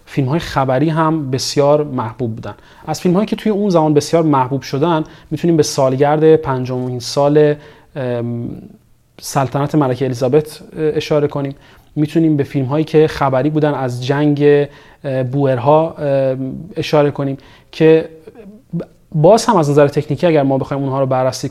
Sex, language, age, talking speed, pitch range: male, Persian, 30-49, 140 wpm, 130-160 Hz